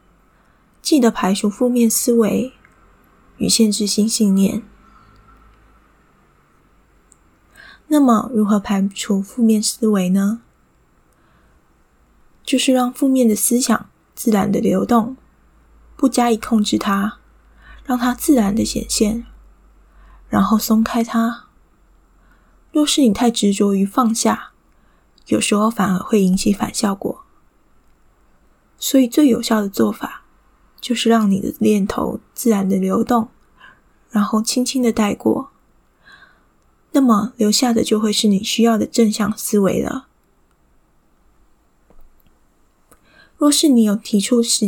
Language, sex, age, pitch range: Chinese, female, 20-39, 210-240 Hz